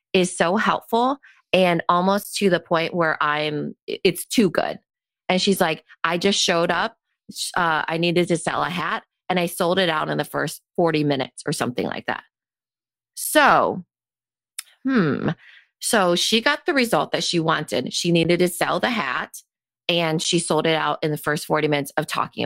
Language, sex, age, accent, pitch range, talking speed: English, female, 30-49, American, 160-205 Hz, 185 wpm